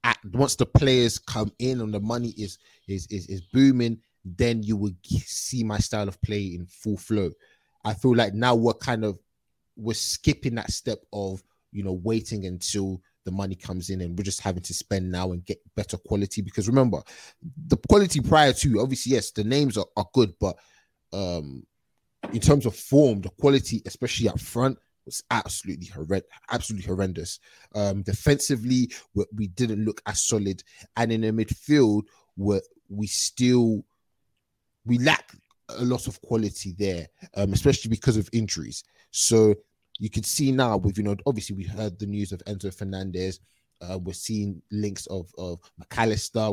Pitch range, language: 95-115 Hz, English